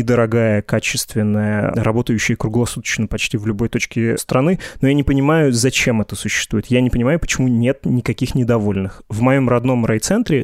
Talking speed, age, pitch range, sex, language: 155 wpm, 20-39, 110-130 Hz, male, Russian